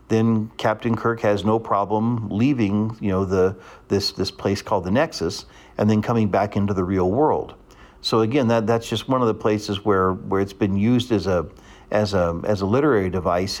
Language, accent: English, American